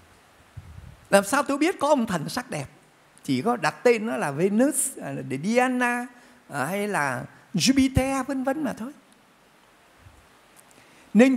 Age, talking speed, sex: 60-79, 130 wpm, male